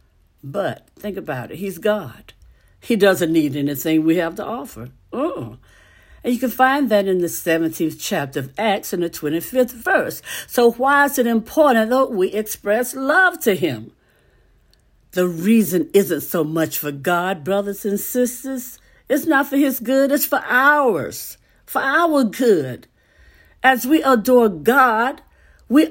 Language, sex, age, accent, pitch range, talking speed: English, female, 60-79, American, 190-275 Hz, 155 wpm